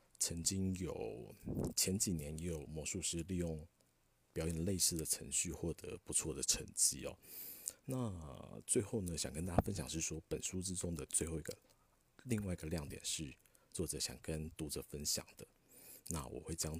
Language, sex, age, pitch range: Chinese, male, 50-69, 80-95 Hz